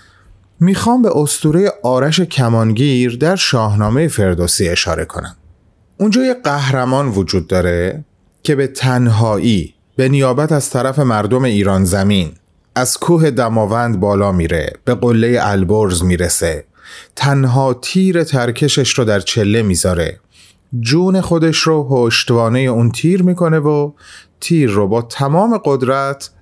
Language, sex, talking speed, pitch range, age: Persian, male, 125 wpm, 95-145 Hz, 30-49